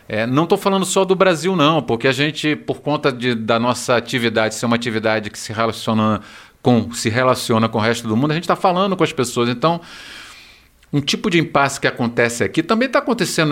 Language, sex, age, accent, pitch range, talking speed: Portuguese, male, 40-59, Brazilian, 115-145 Hz, 220 wpm